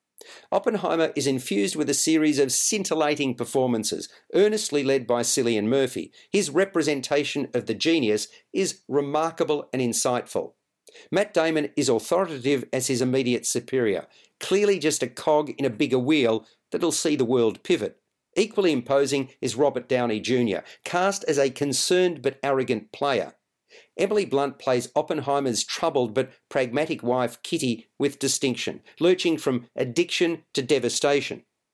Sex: male